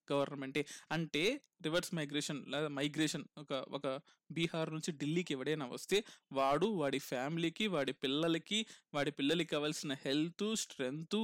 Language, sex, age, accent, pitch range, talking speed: Telugu, male, 20-39, native, 150-190 Hz, 125 wpm